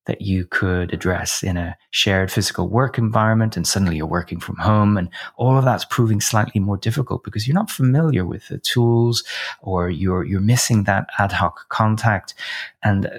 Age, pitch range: 30-49, 90-115 Hz